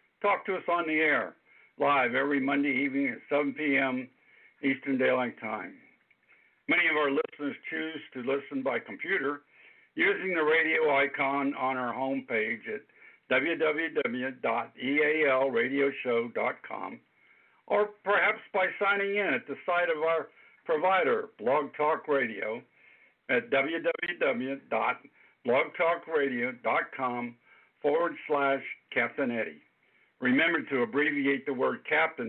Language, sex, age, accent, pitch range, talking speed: English, male, 60-79, American, 135-165 Hz, 110 wpm